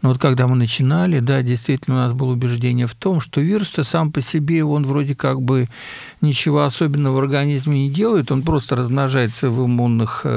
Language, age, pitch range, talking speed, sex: Russian, 50-69, 120-140 Hz, 190 wpm, male